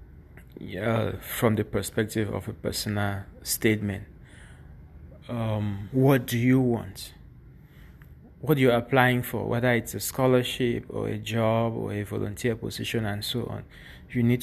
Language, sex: English, male